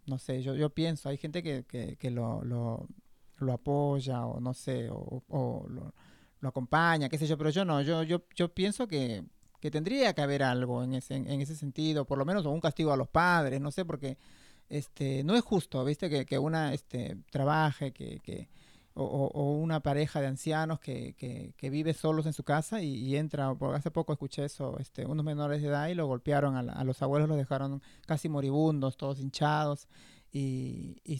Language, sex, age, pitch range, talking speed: Spanish, male, 30-49, 135-155 Hz, 215 wpm